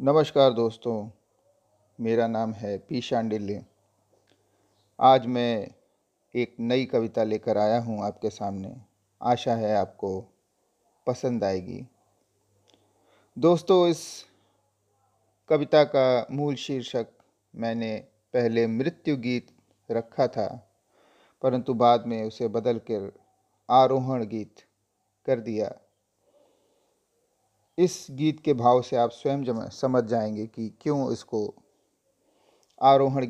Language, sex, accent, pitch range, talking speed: Hindi, male, native, 110-140 Hz, 105 wpm